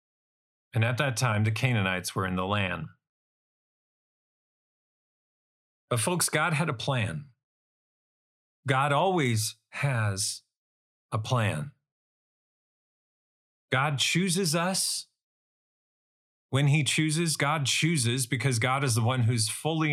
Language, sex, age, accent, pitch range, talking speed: English, male, 40-59, American, 110-150 Hz, 110 wpm